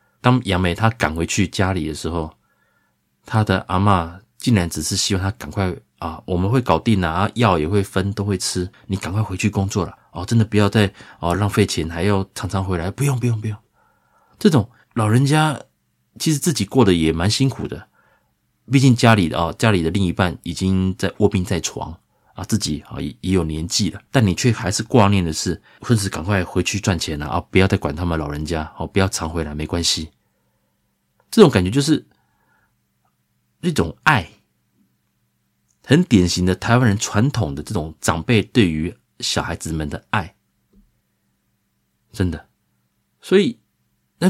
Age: 30-49